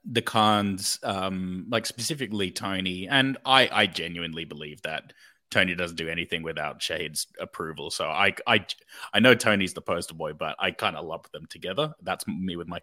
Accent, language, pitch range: Australian, English, 100-130 Hz